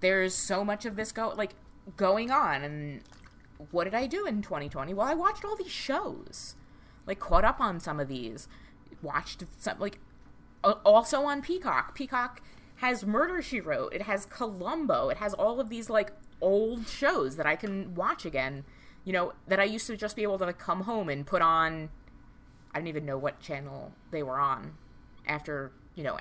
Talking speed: 185 wpm